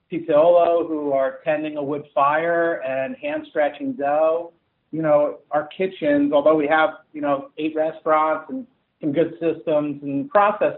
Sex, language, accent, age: male, English, American, 50-69